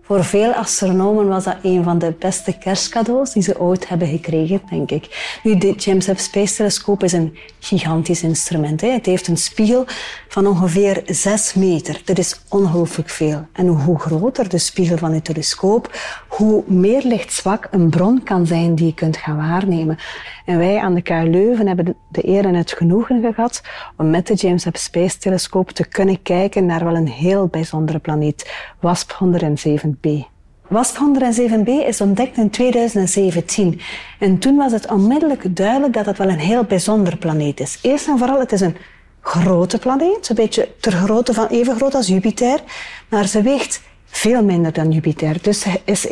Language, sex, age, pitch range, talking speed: Dutch, female, 30-49, 175-230 Hz, 180 wpm